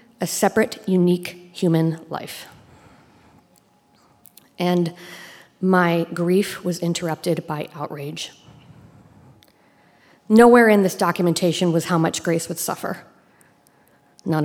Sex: female